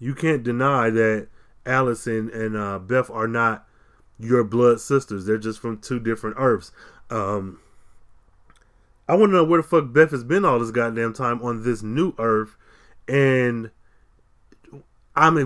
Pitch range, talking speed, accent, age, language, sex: 115-140 Hz, 155 wpm, American, 20-39, English, male